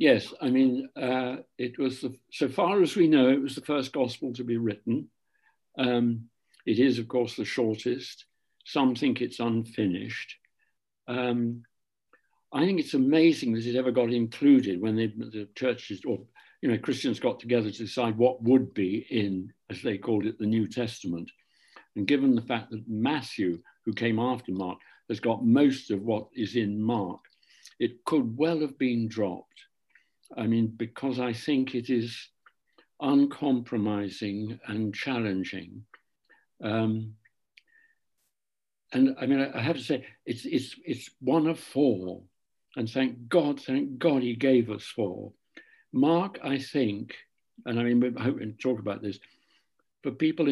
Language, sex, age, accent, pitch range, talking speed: English, male, 60-79, British, 110-135 Hz, 155 wpm